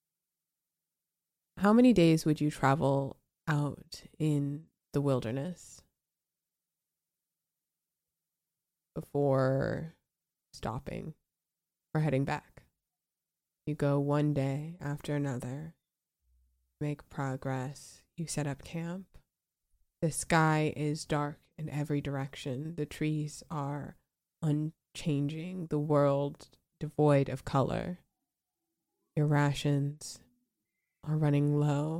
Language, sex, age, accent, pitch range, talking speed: English, female, 20-39, American, 140-160 Hz, 90 wpm